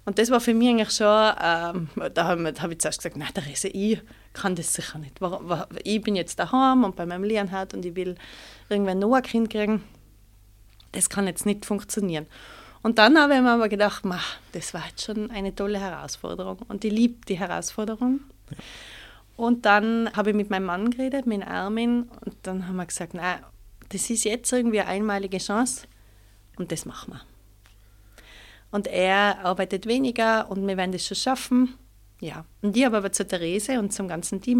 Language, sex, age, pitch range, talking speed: German, female, 30-49, 170-225 Hz, 195 wpm